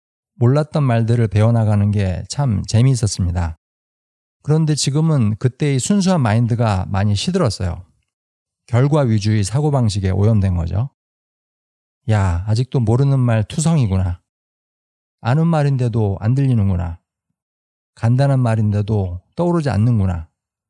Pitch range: 100-135 Hz